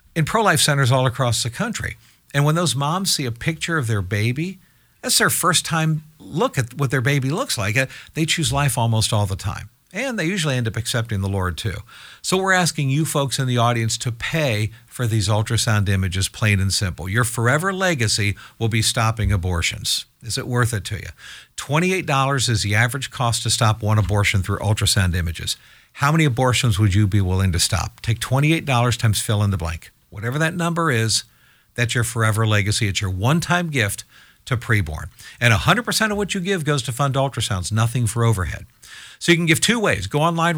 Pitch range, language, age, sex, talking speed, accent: 110-150 Hz, English, 50-69, male, 205 wpm, American